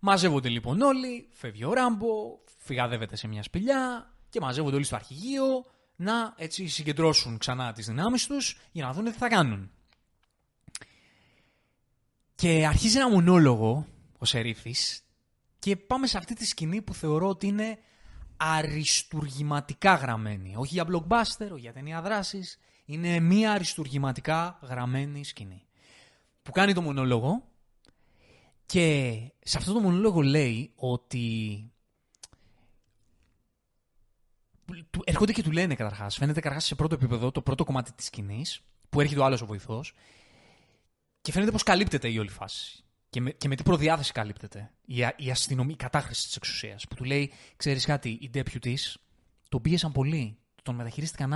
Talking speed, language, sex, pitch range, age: 145 wpm, Greek, male, 120-175 Hz, 20-39